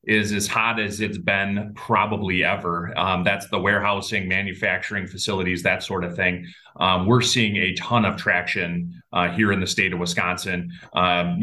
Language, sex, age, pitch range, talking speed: English, male, 30-49, 95-110 Hz, 175 wpm